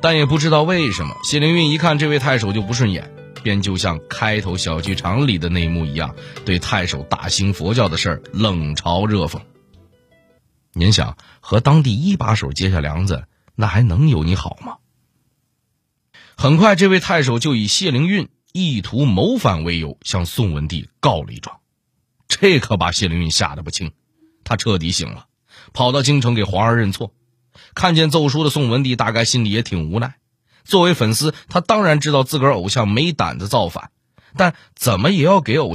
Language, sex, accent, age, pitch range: Chinese, male, native, 30-49, 95-150 Hz